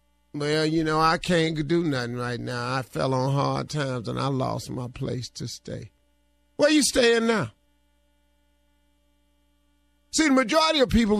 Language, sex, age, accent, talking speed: English, male, 50-69, American, 165 wpm